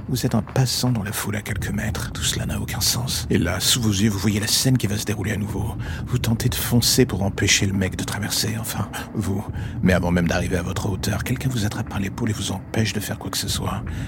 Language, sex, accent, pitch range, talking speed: French, male, French, 95-110 Hz, 270 wpm